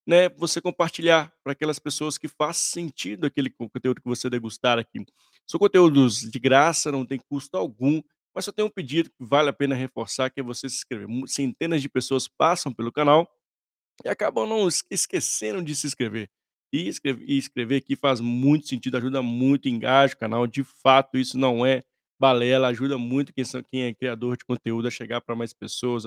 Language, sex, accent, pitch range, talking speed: Portuguese, male, Brazilian, 120-145 Hz, 185 wpm